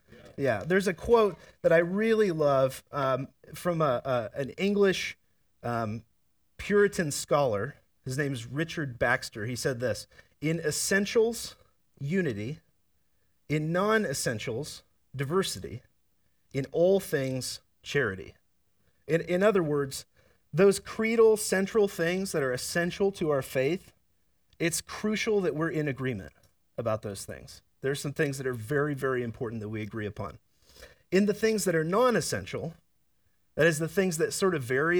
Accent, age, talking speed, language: American, 30-49, 140 wpm, English